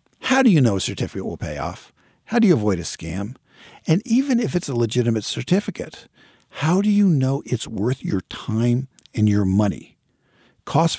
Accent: American